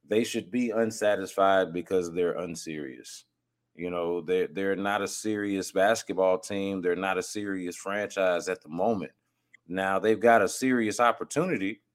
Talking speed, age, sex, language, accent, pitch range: 150 wpm, 30-49, male, English, American, 85-105 Hz